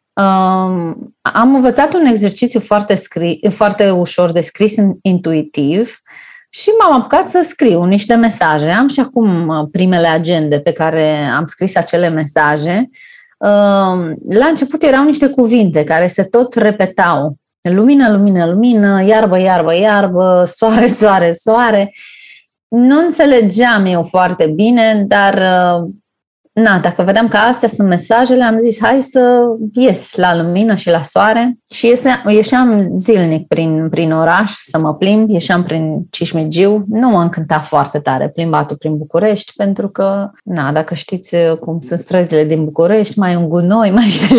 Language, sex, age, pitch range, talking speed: Romanian, female, 20-39, 170-230 Hz, 140 wpm